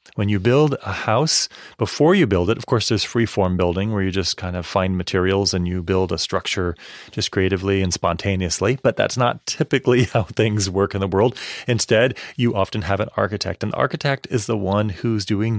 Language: English